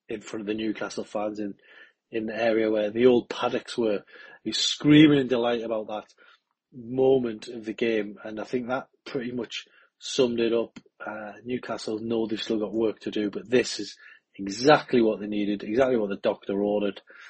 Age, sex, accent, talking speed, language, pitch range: 30-49, male, British, 190 wpm, English, 105-125 Hz